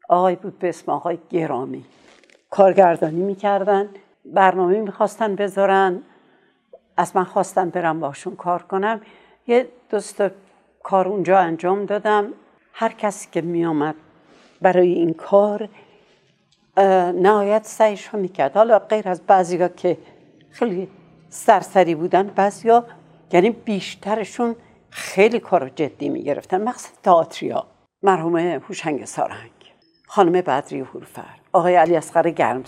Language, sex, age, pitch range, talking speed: Persian, female, 60-79, 175-215 Hz, 120 wpm